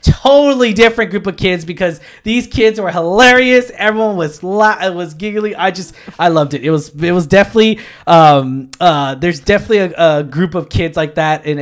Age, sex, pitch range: 20-39, male, 145-180 Hz